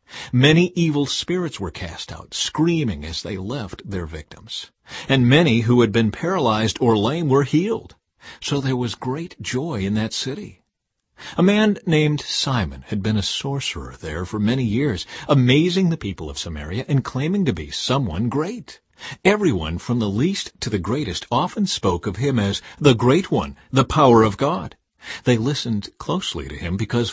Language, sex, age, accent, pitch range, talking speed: English, male, 50-69, American, 105-150 Hz, 175 wpm